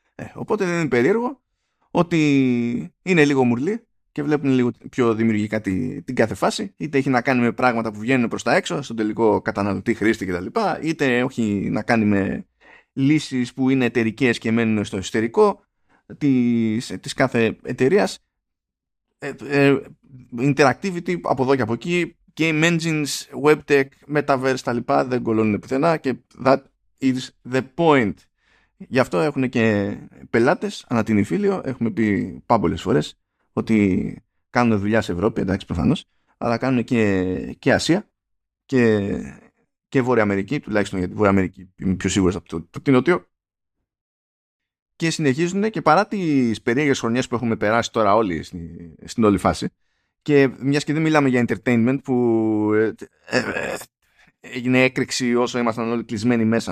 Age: 20-39